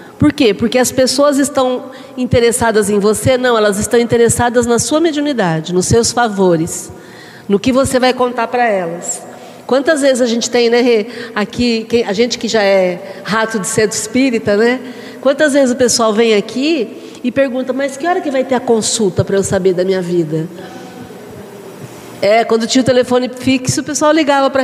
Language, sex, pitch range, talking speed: Portuguese, female, 205-260 Hz, 185 wpm